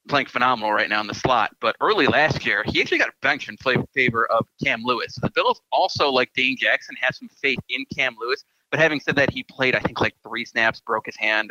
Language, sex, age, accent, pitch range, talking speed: English, male, 30-49, American, 115-145 Hz, 260 wpm